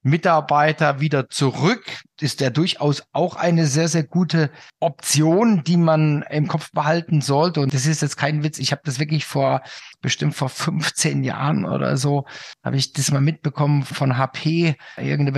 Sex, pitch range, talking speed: male, 135-165 Hz, 170 wpm